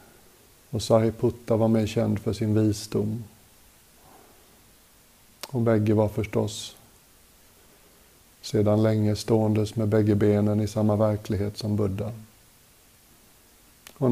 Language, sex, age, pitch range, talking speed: Swedish, male, 60-79, 105-115 Hz, 100 wpm